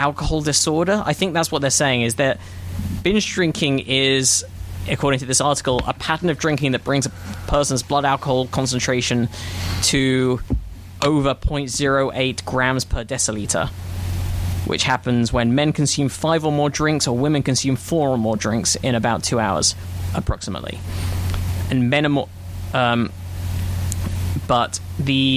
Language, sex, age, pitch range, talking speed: English, male, 10-29, 90-140 Hz, 145 wpm